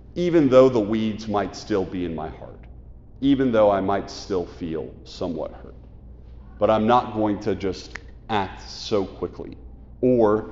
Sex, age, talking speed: male, 40-59, 160 wpm